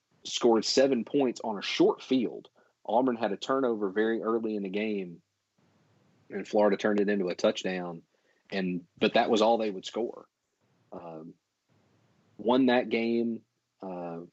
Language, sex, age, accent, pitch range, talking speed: English, male, 40-59, American, 90-110 Hz, 150 wpm